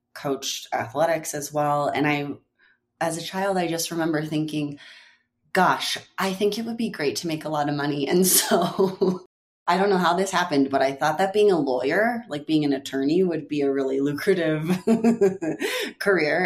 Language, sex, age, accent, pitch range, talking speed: English, female, 30-49, American, 140-180 Hz, 185 wpm